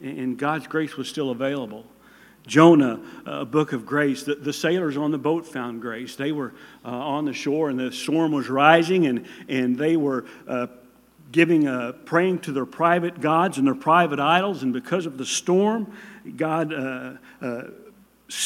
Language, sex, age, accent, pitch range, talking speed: English, male, 50-69, American, 135-175 Hz, 180 wpm